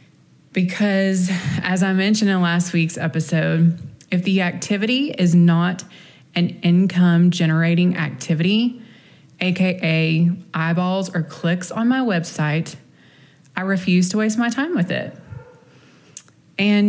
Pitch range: 165-195 Hz